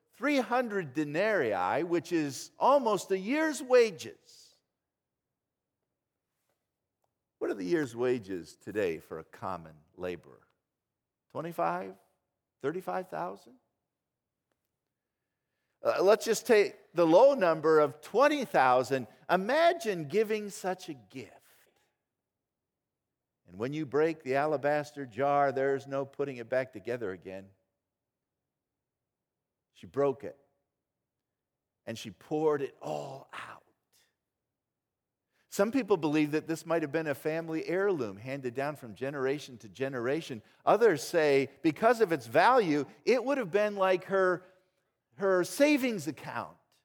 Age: 50-69